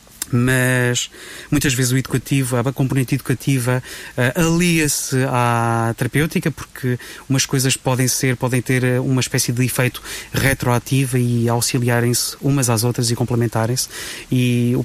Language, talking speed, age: Portuguese, 130 wpm, 30-49